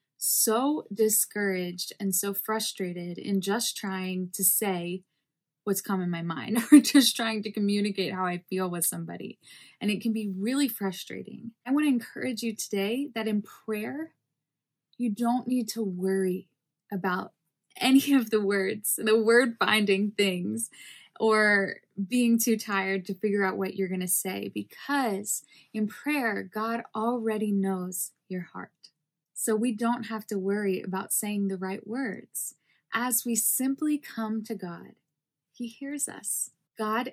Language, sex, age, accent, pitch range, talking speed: English, female, 20-39, American, 185-230 Hz, 155 wpm